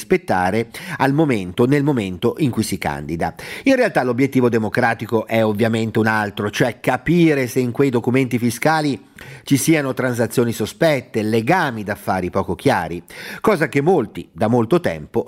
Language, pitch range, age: Italian, 115-155 Hz, 40-59